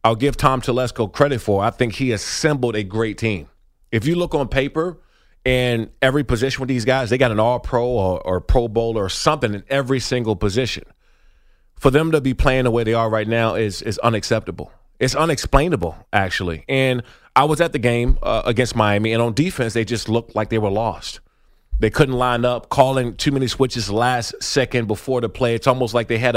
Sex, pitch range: male, 115-135 Hz